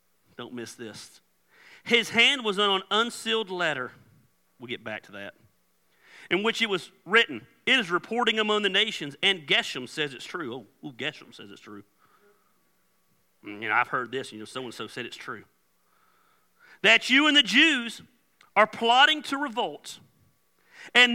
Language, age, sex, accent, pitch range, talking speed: English, 40-59, male, American, 170-275 Hz, 165 wpm